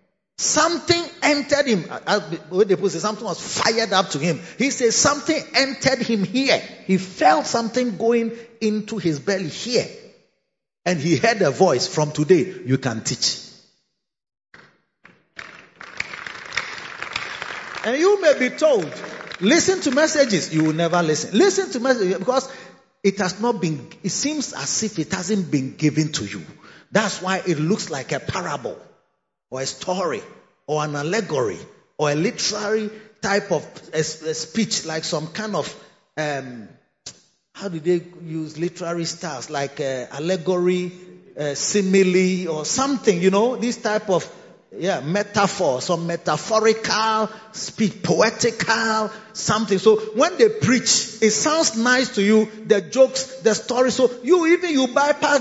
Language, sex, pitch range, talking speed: English, male, 170-235 Hz, 145 wpm